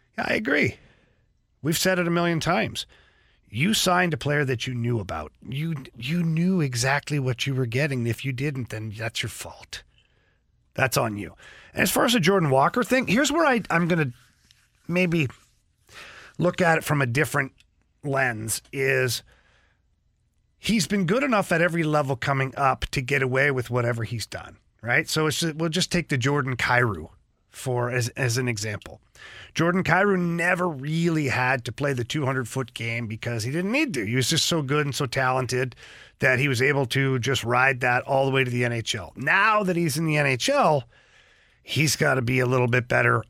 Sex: male